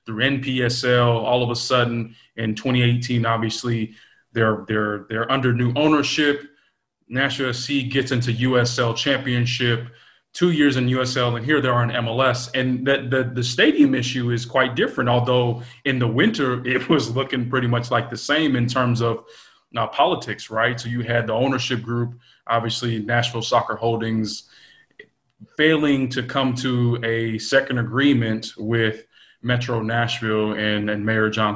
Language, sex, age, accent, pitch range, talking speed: English, male, 20-39, American, 115-135 Hz, 155 wpm